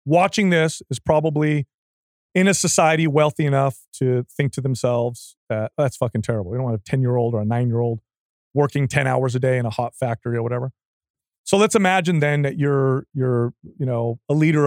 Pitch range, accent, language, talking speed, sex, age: 125-160 Hz, American, English, 210 wpm, male, 30-49